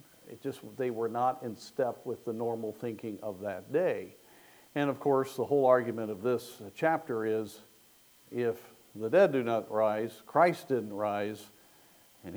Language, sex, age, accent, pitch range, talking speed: English, male, 50-69, American, 110-145 Hz, 165 wpm